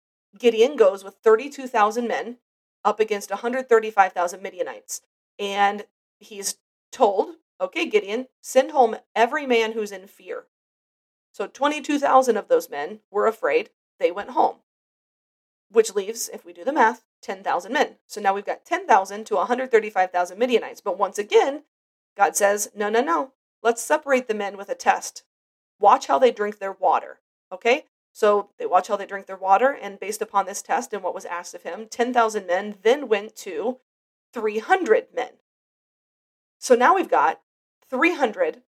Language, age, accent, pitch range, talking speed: English, 30-49, American, 205-300 Hz, 160 wpm